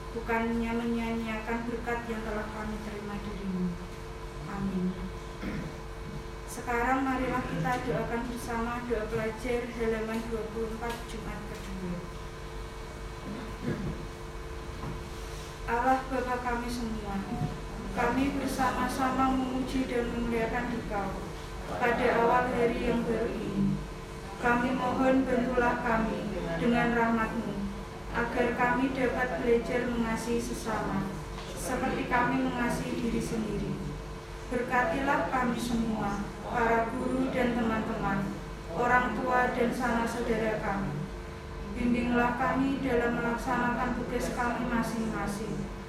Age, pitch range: 20-39, 225-245 Hz